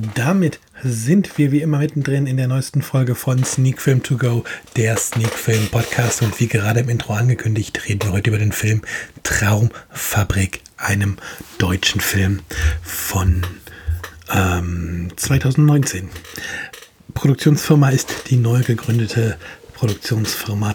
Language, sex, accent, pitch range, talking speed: German, male, German, 105-135 Hz, 125 wpm